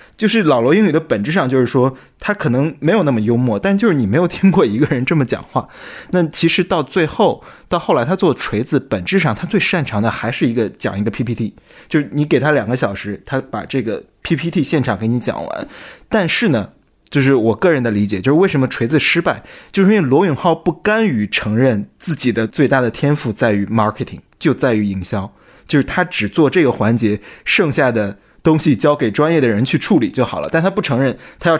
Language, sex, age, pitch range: Chinese, male, 20-39, 115-155 Hz